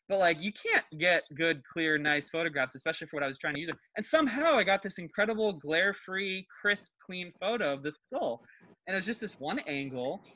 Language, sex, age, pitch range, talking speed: English, male, 20-39, 140-175 Hz, 215 wpm